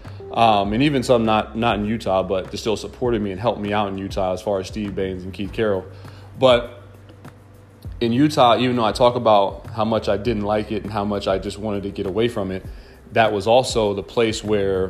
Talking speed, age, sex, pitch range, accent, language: 235 wpm, 30-49, male, 100-125 Hz, American, English